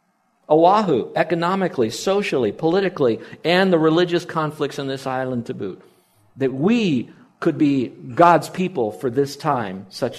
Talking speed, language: 135 wpm, English